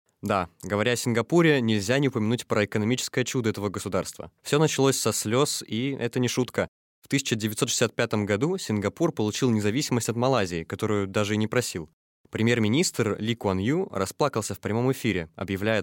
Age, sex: 20-39, male